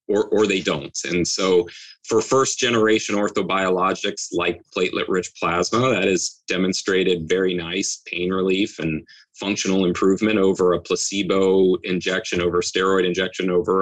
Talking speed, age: 130 wpm, 30-49